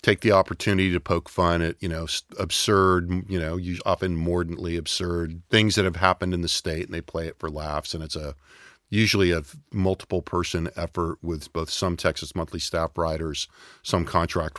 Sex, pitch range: male, 85-110 Hz